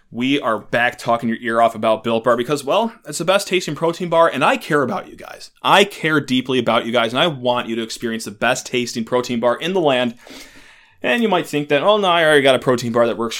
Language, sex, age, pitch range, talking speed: English, male, 20-39, 115-145 Hz, 265 wpm